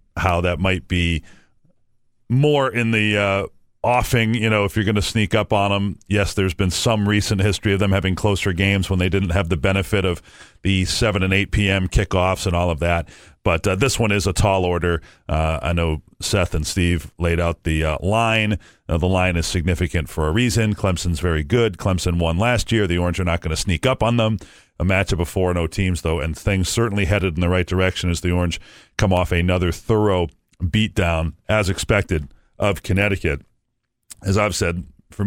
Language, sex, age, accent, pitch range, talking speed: English, male, 40-59, American, 85-110 Hz, 205 wpm